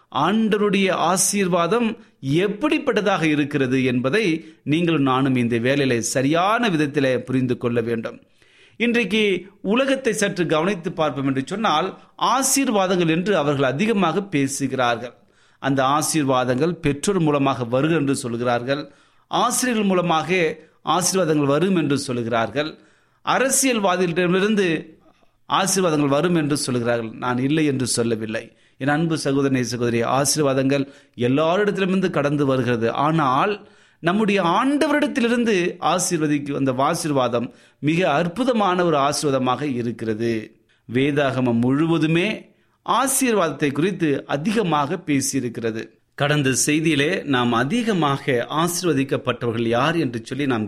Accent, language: native, Tamil